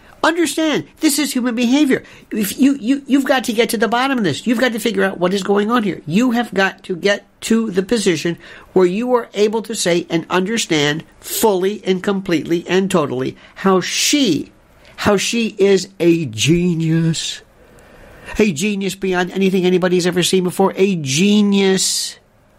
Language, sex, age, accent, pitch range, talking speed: English, male, 60-79, American, 160-210 Hz, 165 wpm